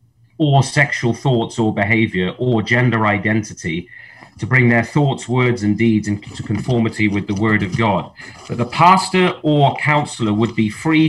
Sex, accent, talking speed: male, British, 160 wpm